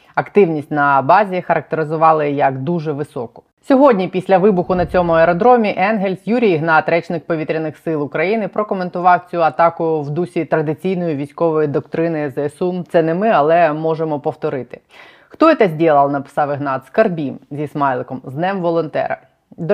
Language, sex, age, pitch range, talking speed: Ukrainian, female, 20-39, 150-180 Hz, 145 wpm